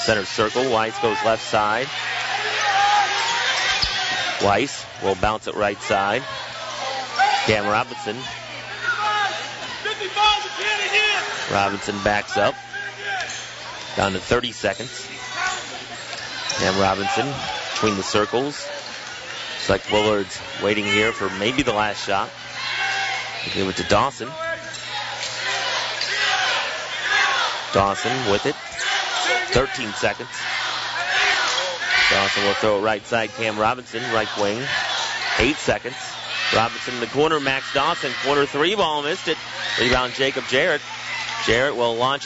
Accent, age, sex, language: American, 30-49, male, English